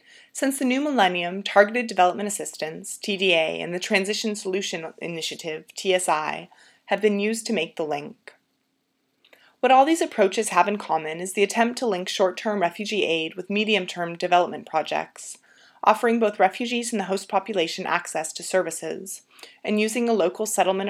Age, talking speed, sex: 30-49, 160 wpm, female